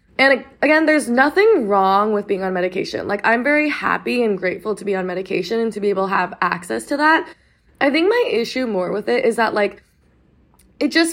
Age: 20-39